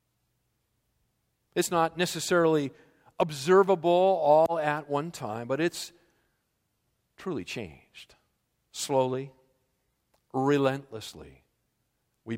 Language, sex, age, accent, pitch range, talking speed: English, male, 50-69, American, 115-175 Hz, 75 wpm